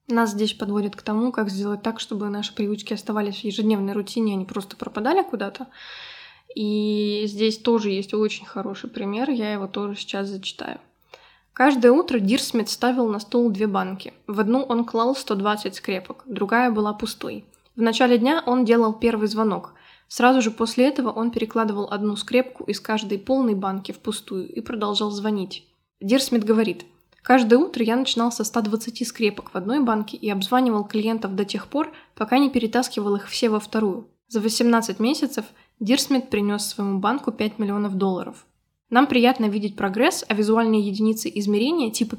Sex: female